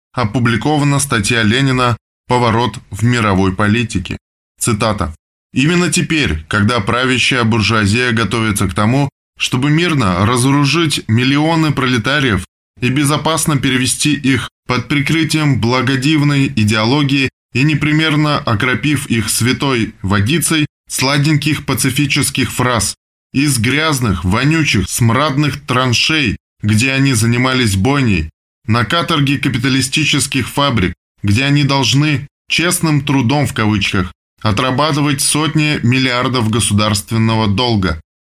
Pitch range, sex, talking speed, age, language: 105-145 Hz, male, 100 wpm, 20-39, Russian